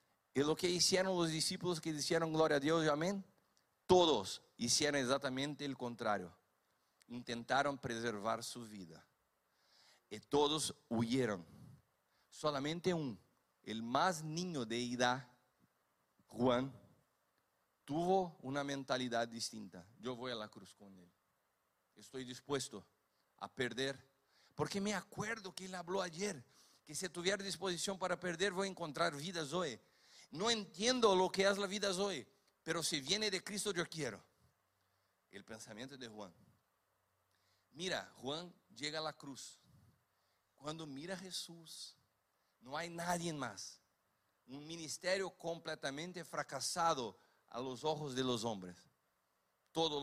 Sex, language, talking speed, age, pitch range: male, Spanish, 130 wpm, 50-69, 120-180 Hz